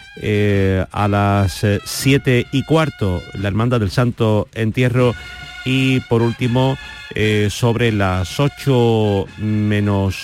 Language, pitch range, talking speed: Spanish, 105-130 Hz, 110 wpm